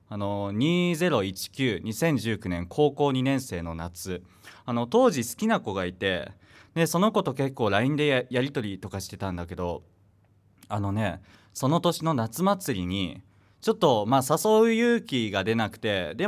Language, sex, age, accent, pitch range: Japanese, male, 20-39, native, 95-140 Hz